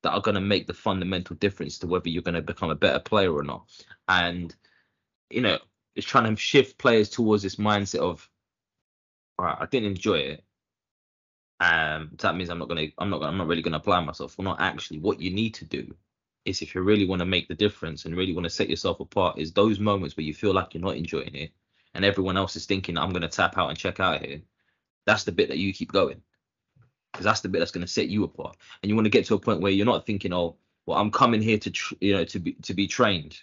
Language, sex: English, male